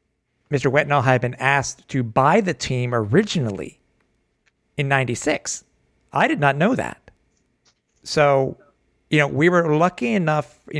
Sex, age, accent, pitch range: male, 50-69, American, 125-150 Hz